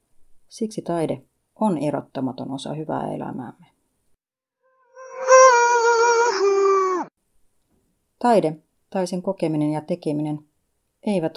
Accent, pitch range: native, 145-180 Hz